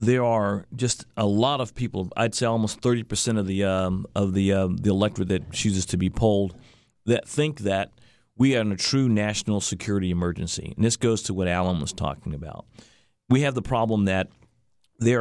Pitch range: 100-115 Hz